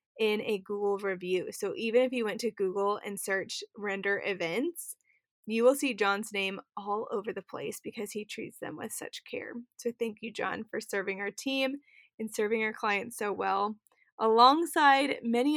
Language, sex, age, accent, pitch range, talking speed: English, female, 20-39, American, 200-250 Hz, 180 wpm